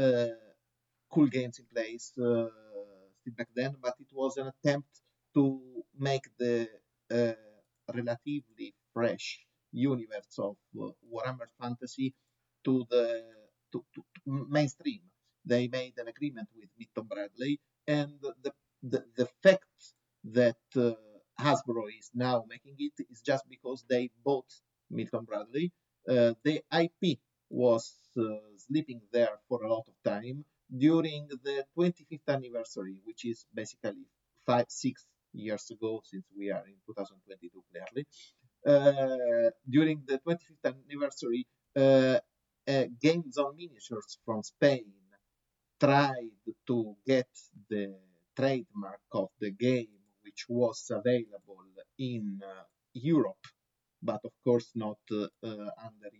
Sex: male